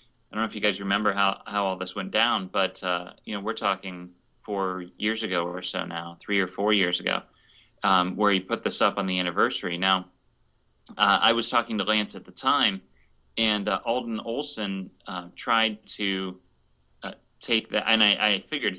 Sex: male